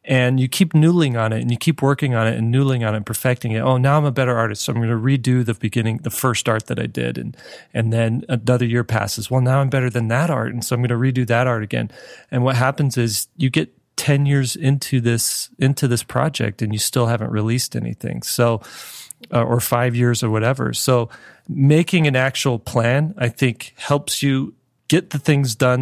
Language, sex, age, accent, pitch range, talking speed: English, male, 30-49, American, 115-135 Hz, 230 wpm